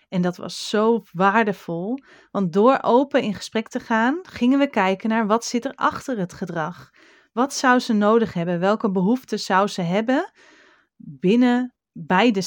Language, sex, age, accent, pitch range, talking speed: Dutch, female, 30-49, Dutch, 195-245 Hz, 165 wpm